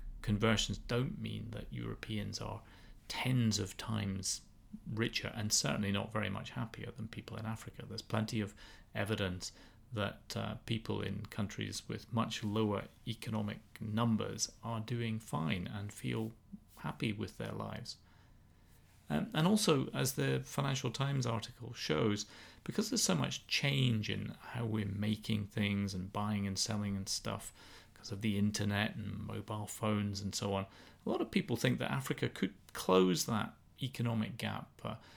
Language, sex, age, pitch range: English, male, 30-49, 100-115 Hz